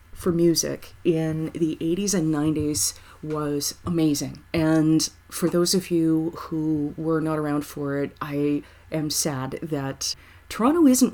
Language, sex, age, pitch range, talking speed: English, female, 30-49, 145-175 Hz, 140 wpm